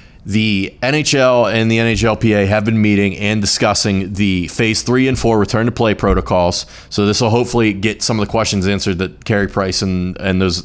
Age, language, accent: 30-49, English, American